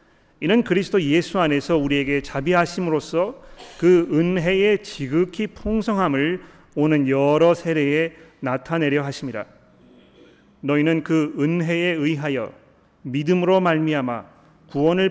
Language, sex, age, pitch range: Korean, male, 40-59, 140-180 Hz